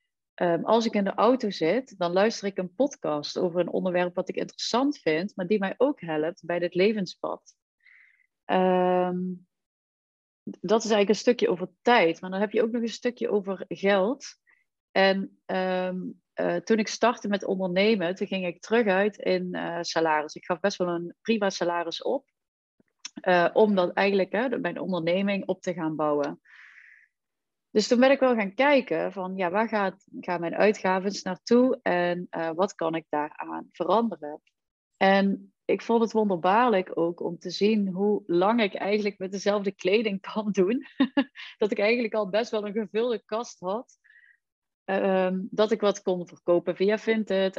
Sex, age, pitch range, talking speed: female, 30-49, 175-220 Hz, 170 wpm